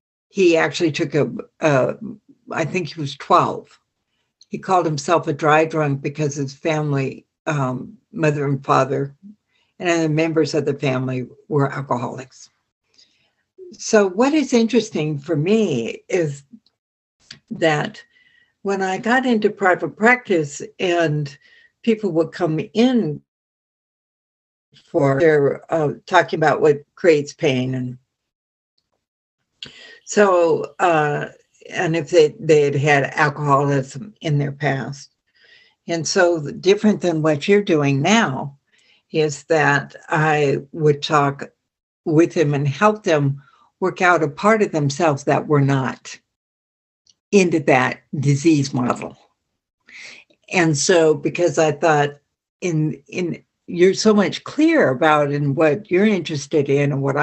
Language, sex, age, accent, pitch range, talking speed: English, female, 60-79, American, 140-190 Hz, 130 wpm